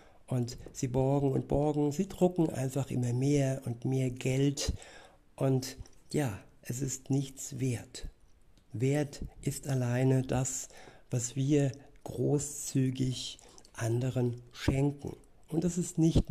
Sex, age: male, 60-79